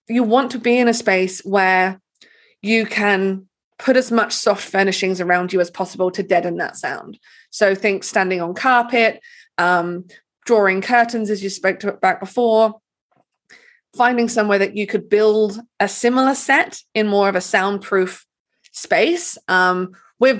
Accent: British